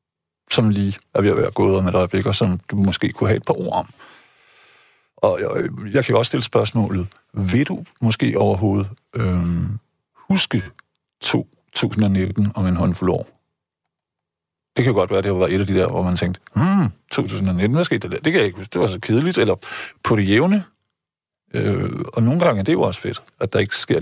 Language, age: Danish, 50-69